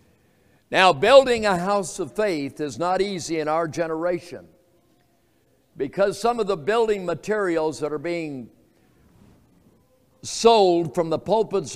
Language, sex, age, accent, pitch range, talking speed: English, male, 60-79, American, 155-215 Hz, 130 wpm